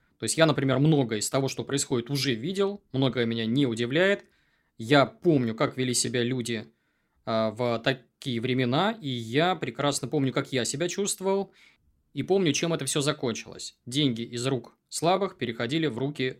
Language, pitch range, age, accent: Russian, 115-140 Hz, 20-39, native